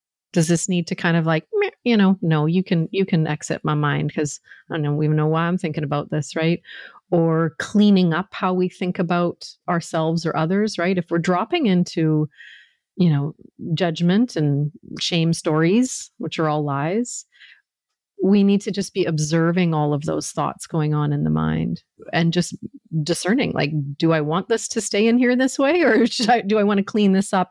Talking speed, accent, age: 200 wpm, American, 40-59